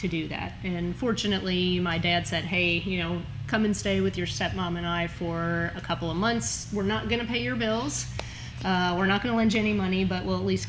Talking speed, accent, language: 230 wpm, American, English